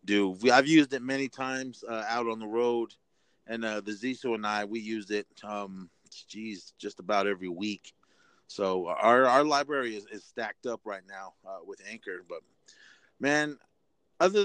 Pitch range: 105-130 Hz